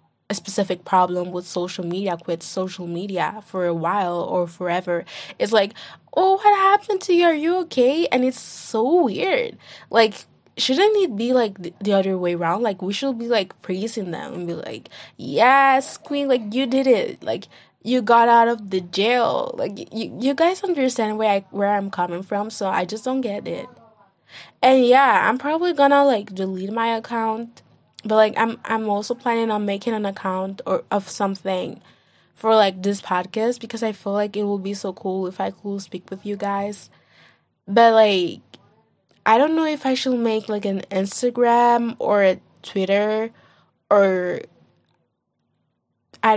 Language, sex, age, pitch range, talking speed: English, female, 10-29, 190-240 Hz, 175 wpm